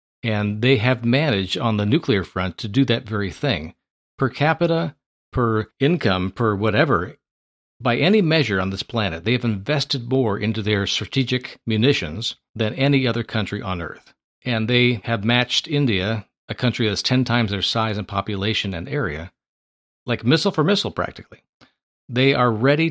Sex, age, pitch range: male, 50-69, 105-135 Hz